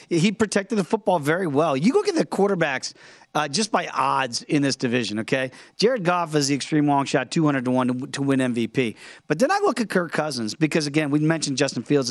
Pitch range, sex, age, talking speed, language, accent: 140-220 Hz, male, 40-59, 225 wpm, English, American